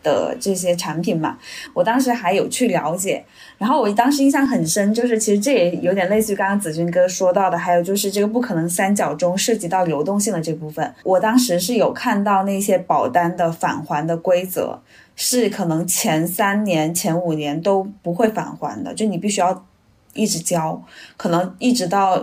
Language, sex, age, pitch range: Chinese, female, 20-39, 170-205 Hz